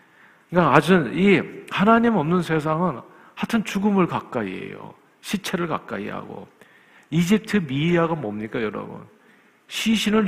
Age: 50-69